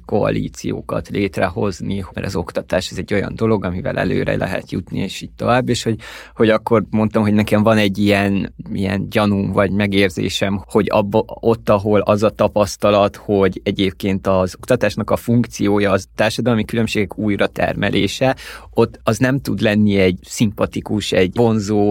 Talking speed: 155 wpm